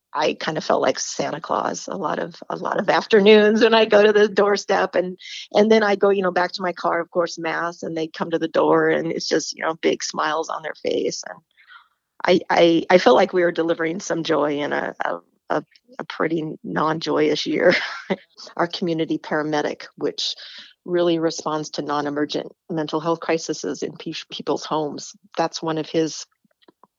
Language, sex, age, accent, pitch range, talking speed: English, female, 40-59, American, 155-180 Hz, 195 wpm